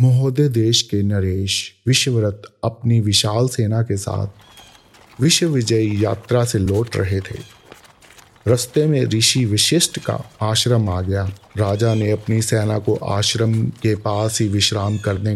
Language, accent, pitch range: Hindi, native, 100-125 Hz